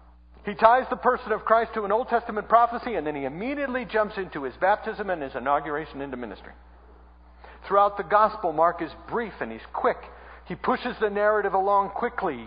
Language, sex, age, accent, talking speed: English, male, 50-69, American, 190 wpm